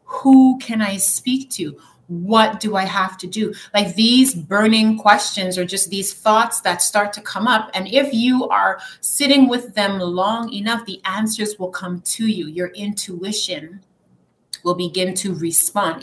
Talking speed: 170 wpm